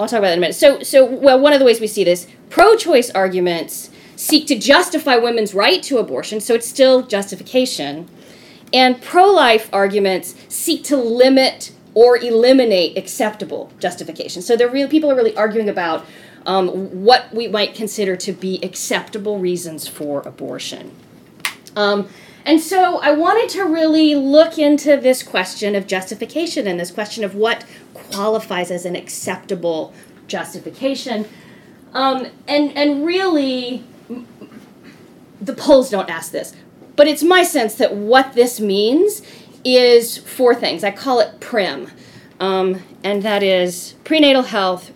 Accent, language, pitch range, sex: American, English, 190-270 Hz, female